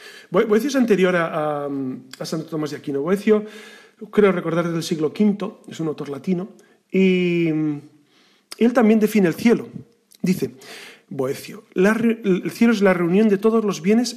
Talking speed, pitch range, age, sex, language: 165 wpm, 155-215 Hz, 40-59, male, Spanish